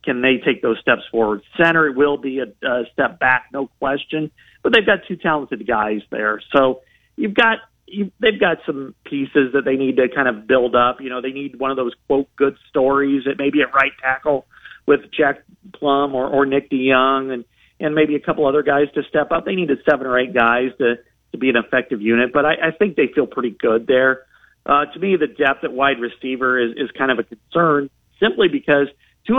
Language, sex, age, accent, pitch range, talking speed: English, male, 40-59, American, 125-150 Hz, 220 wpm